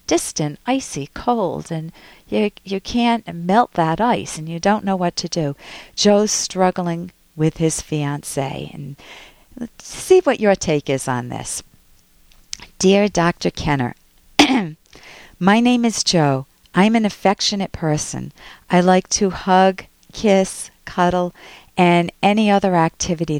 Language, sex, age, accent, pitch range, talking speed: English, female, 50-69, American, 150-200 Hz, 130 wpm